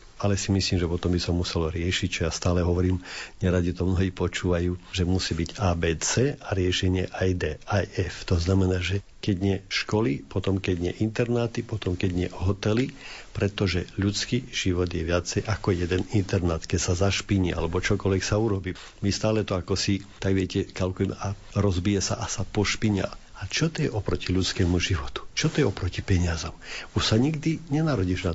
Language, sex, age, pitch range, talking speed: Slovak, male, 50-69, 90-105 Hz, 185 wpm